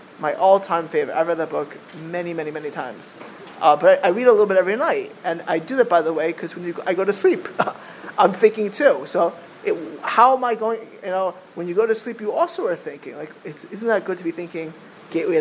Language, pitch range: English, 160-220 Hz